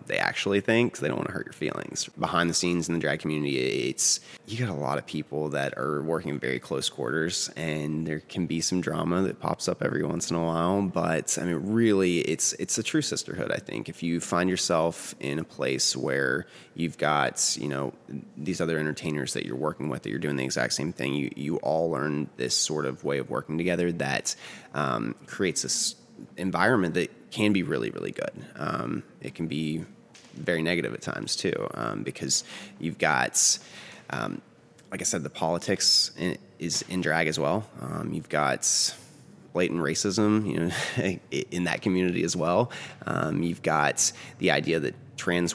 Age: 30-49